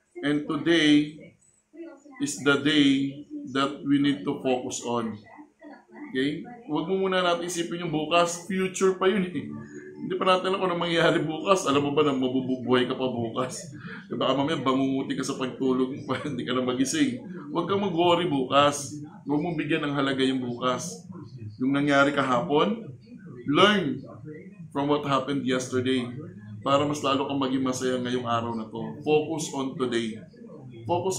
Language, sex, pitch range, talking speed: Filipino, male, 130-175 Hz, 160 wpm